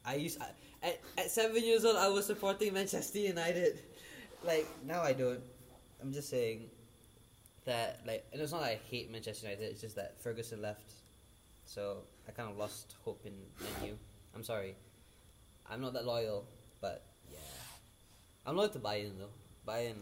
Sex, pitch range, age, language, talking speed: male, 110-135 Hz, 10-29, English, 175 wpm